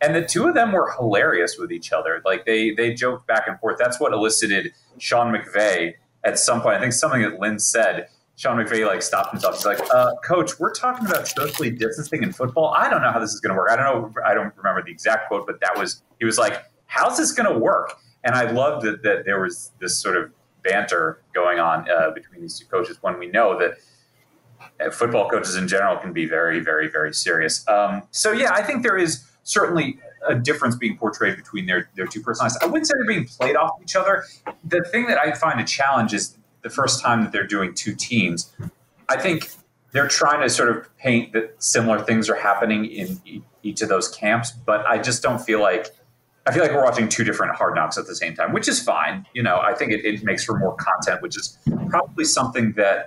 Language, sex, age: English, male, 30-49